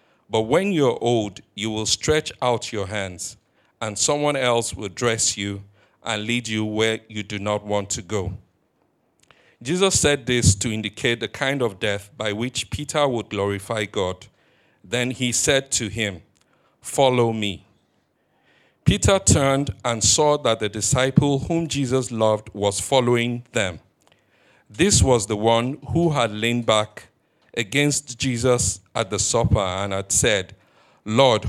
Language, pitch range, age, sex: English, 105-130 Hz, 60-79, male